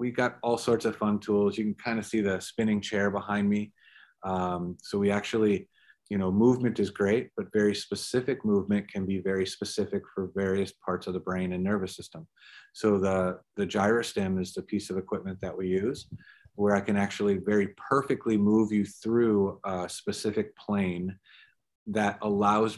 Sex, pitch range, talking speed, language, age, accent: male, 95-105 Hz, 185 wpm, English, 30-49, American